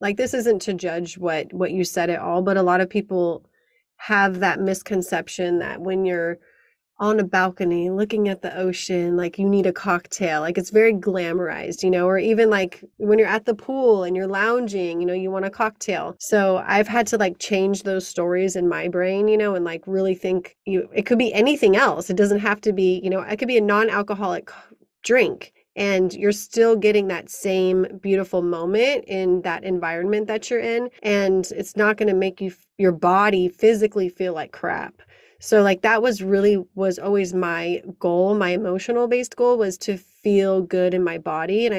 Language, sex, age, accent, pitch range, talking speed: English, female, 30-49, American, 180-210 Hz, 200 wpm